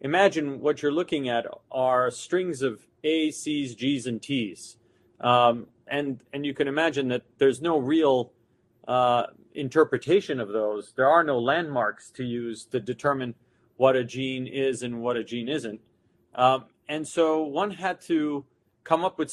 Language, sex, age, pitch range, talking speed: English, male, 40-59, 125-160 Hz, 165 wpm